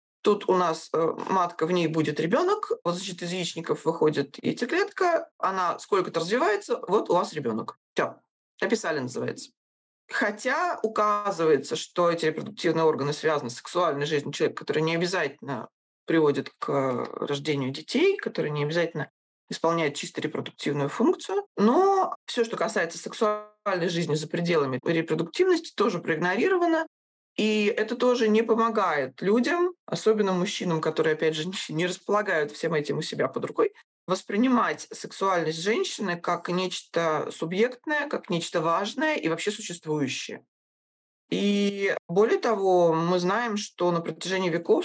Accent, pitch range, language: native, 160-220 Hz, Russian